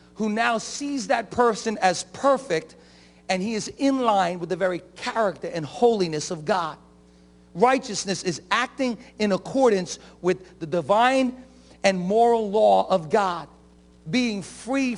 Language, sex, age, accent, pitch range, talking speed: English, male, 50-69, American, 170-235 Hz, 140 wpm